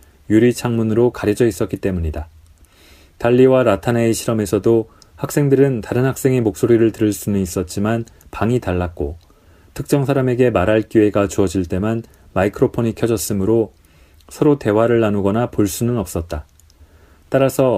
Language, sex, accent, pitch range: Korean, male, native, 90-125 Hz